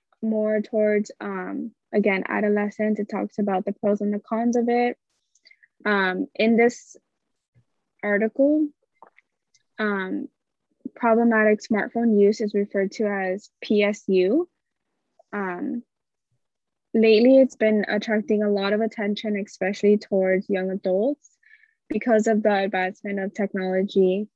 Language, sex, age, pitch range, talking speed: English, female, 10-29, 200-225 Hz, 115 wpm